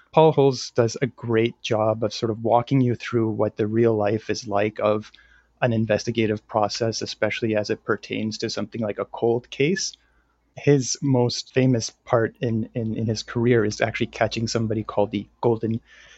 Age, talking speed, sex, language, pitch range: 30-49, 180 wpm, male, English, 110-120 Hz